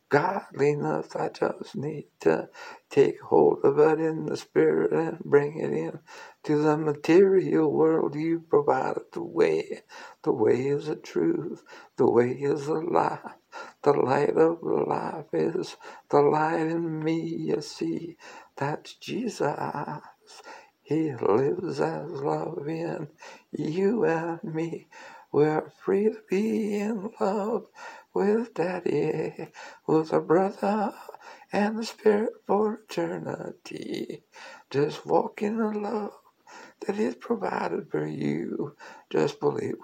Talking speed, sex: 125 wpm, male